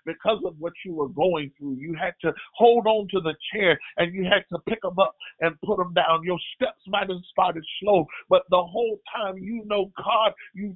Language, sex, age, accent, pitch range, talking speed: English, male, 50-69, American, 180-210 Hz, 225 wpm